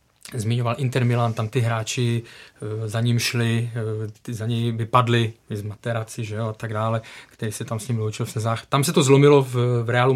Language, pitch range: Czech, 115-130 Hz